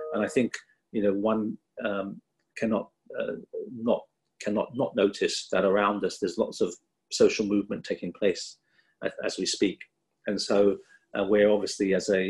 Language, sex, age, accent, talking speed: English, male, 40-59, British, 165 wpm